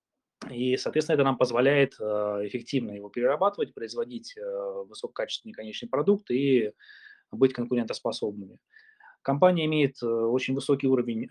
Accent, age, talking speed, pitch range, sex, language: native, 20-39, 105 wpm, 110-175 Hz, male, Russian